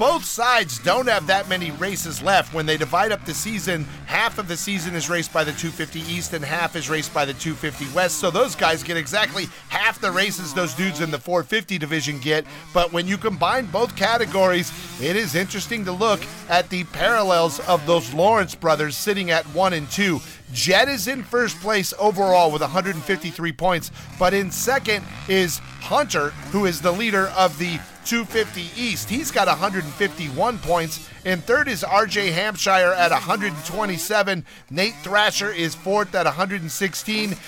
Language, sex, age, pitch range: English, male, 40-59, 165-210 Hz